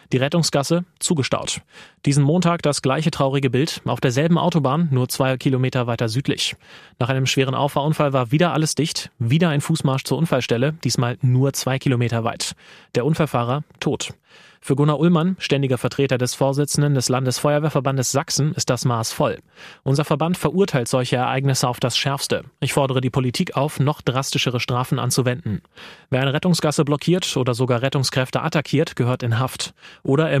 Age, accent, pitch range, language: 30-49, German, 125-145 Hz, German